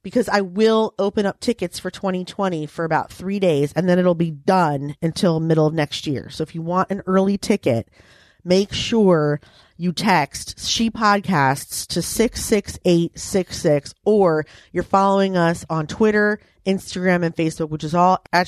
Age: 30-49